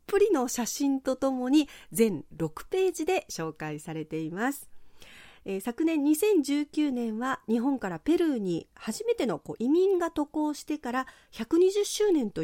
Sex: female